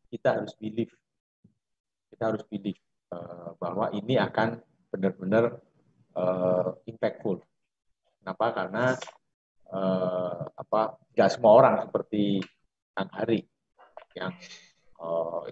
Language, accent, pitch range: Indonesian, native, 95-125 Hz